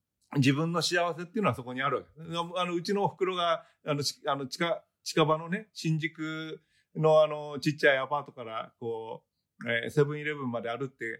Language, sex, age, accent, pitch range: Japanese, male, 40-59, native, 130-195 Hz